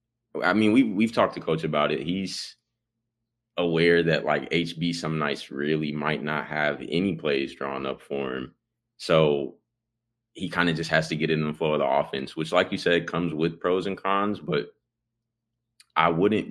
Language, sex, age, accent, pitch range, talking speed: English, male, 20-39, American, 75-100 Hz, 190 wpm